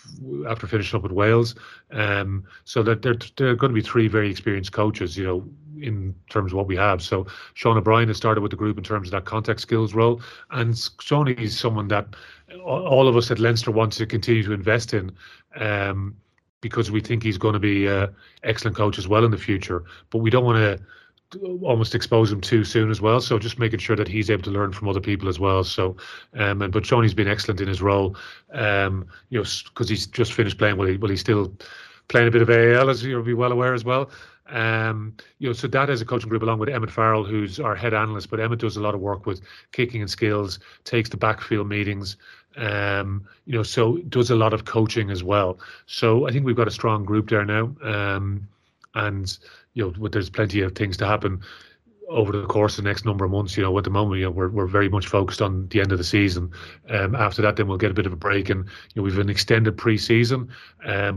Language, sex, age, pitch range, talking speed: English, male, 30-49, 100-115 Hz, 235 wpm